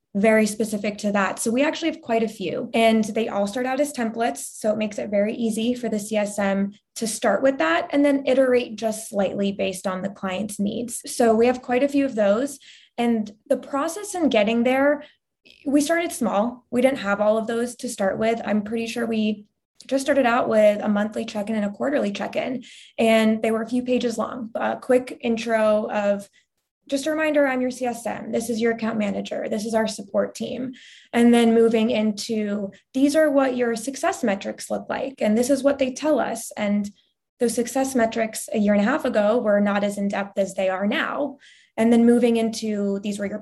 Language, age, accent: English, 20-39, American